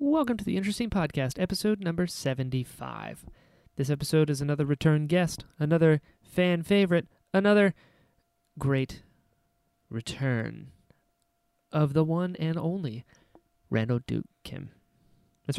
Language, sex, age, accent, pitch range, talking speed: English, male, 30-49, American, 130-170 Hz, 110 wpm